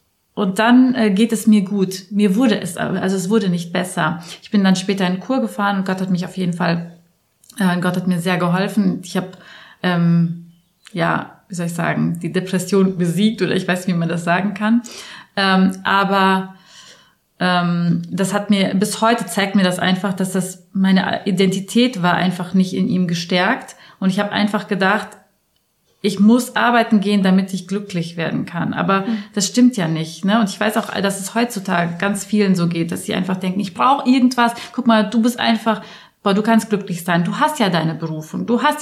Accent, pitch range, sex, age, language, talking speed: German, 180-215 Hz, female, 30-49, German, 205 wpm